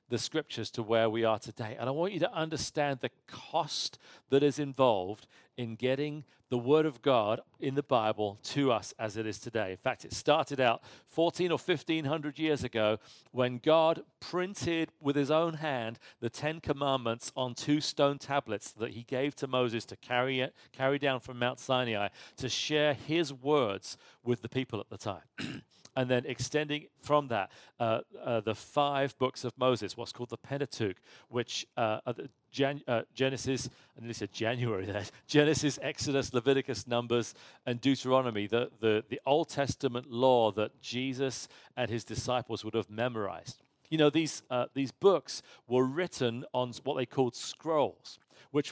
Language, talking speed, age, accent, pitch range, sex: English, 175 wpm, 40-59, British, 115-145 Hz, male